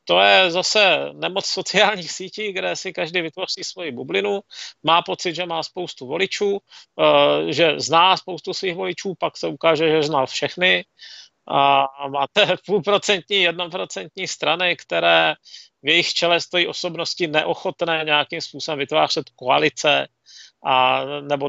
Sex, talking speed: male, 130 wpm